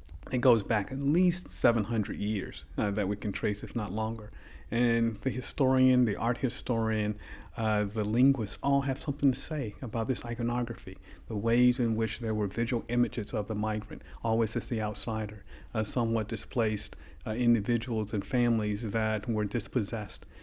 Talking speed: 165 wpm